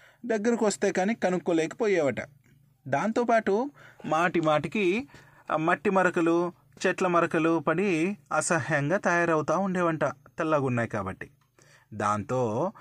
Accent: native